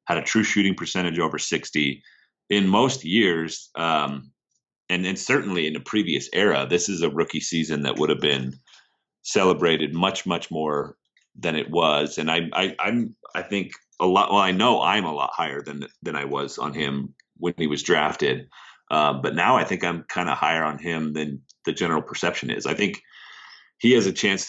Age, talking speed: 30-49, 200 wpm